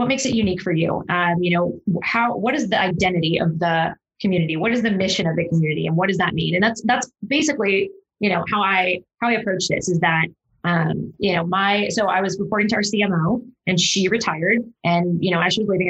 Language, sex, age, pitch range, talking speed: English, female, 20-39, 175-205 Hz, 240 wpm